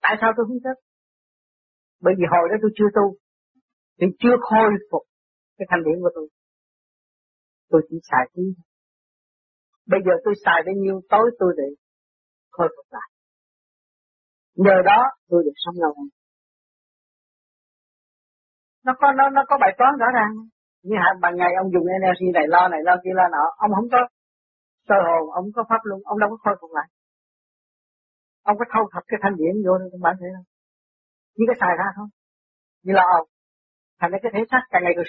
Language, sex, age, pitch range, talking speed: Vietnamese, female, 50-69, 175-230 Hz, 185 wpm